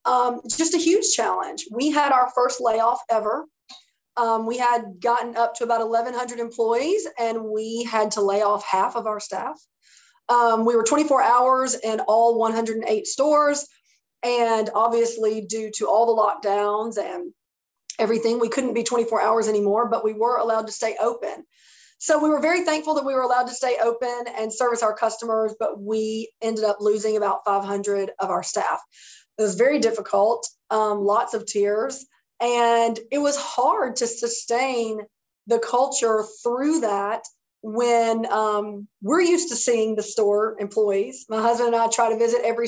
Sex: female